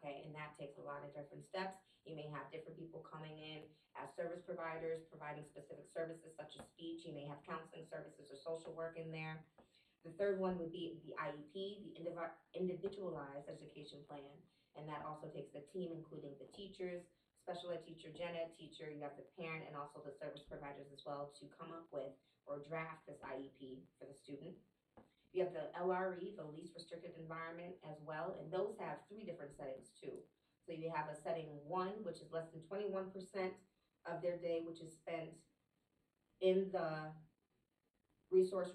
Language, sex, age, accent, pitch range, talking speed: English, female, 20-39, American, 150-180 Hz, 185 wpm